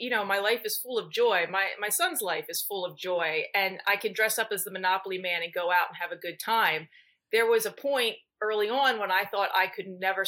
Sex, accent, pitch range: female, American, 180-225 Hz